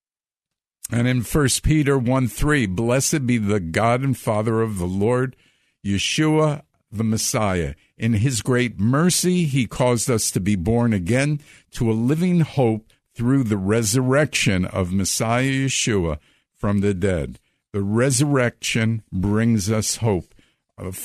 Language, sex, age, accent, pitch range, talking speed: English, male, 50-69, American, 105-130 Hz, 135 wpm